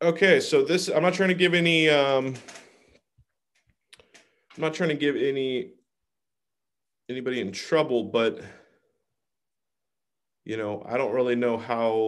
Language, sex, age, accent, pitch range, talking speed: English, male, 30-49, American, 125-165 Hz, 135 wpm